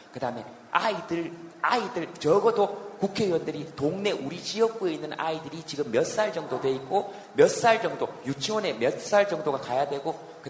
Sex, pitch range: male, 130-195 Hz